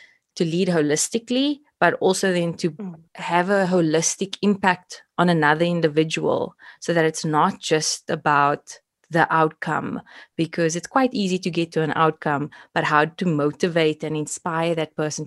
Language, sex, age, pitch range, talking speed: English, female, 20-39, 155-190 Hz, 155 wpm